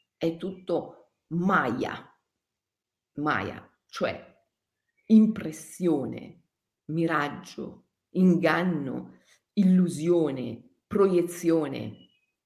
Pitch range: 160-235 Hz